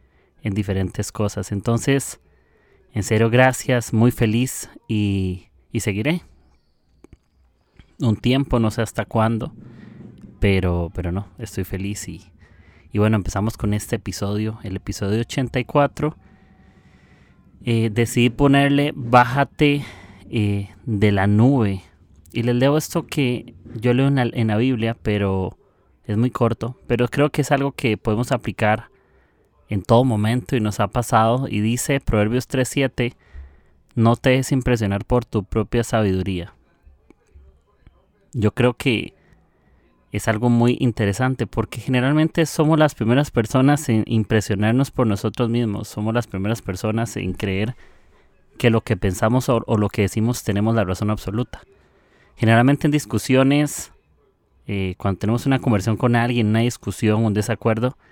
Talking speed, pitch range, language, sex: 140 wpm, 100-125 Hz, Spanish, male